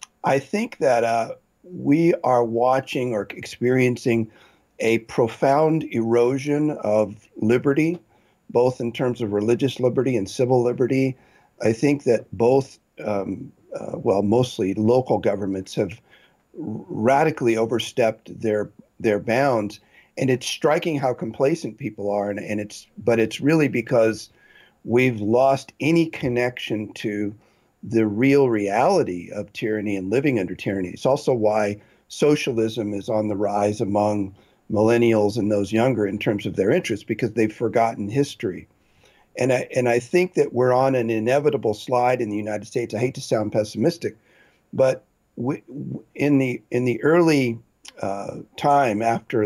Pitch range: 105-130 Hz